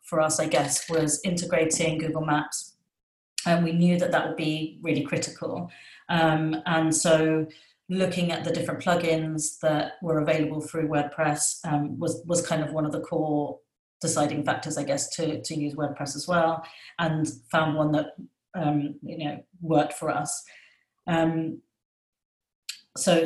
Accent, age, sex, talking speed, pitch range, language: British, 30-49, female, 155 wpm, 155-170 Hz, English